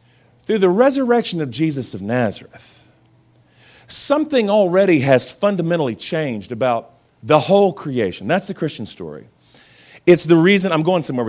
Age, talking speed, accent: 40-59, 140 wpm, American